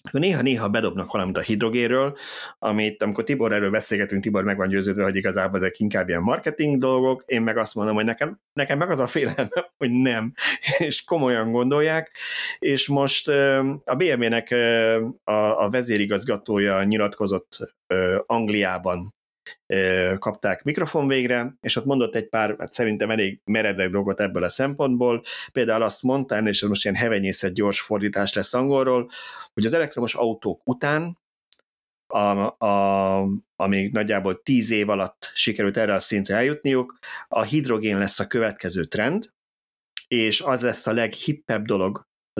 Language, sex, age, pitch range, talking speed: Hungarian, male, 30-49, 100-125 Hz, 140 wpm